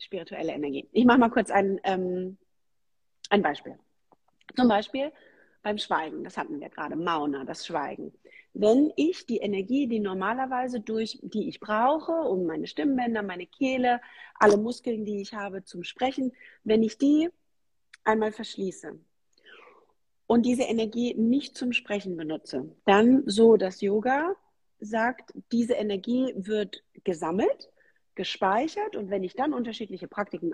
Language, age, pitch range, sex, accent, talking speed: English, 40-59, 195-270 Hz, female, German, 140 wpm